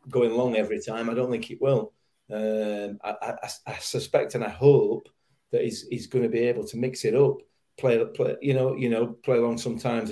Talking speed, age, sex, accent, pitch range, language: 220 wpm, 40-59, male, British, 110-135 Hz, English